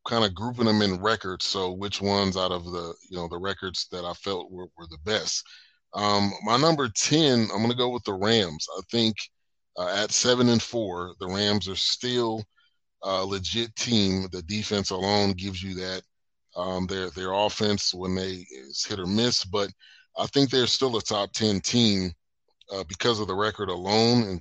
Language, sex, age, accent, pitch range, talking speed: English, male, 30-49, American, 95-110 Hz, 195 wpm